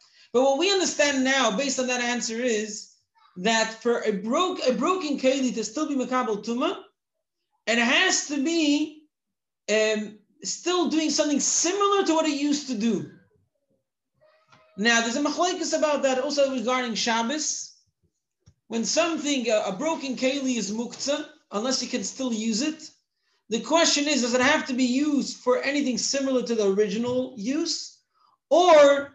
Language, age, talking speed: English, 40-59, 160 wpm